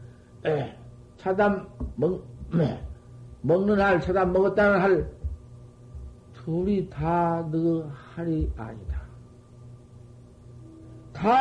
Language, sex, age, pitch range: Korean, male, 50-69, 120-180 Hz